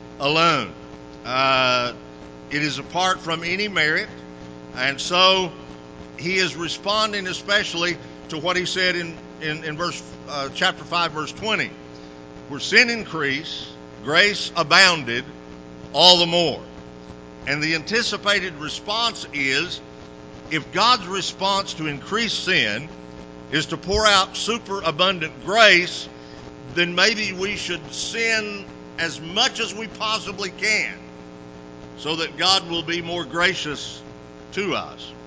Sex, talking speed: male, 125 wpm